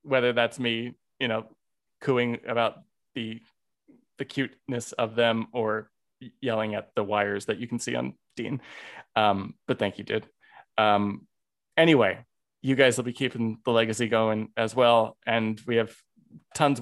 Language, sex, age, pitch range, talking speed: English, male, 20-39, 115-160 Hz, 155 wpm